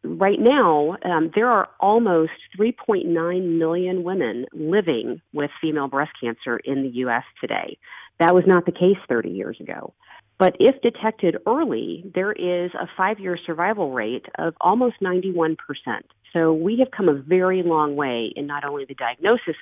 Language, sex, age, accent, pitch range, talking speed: English, female, 40-59, American, 140-185 Hz, 160 wpm